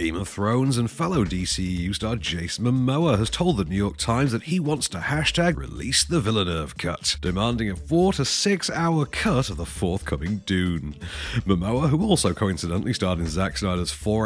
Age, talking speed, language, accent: 40-59, 185 wpm, English, British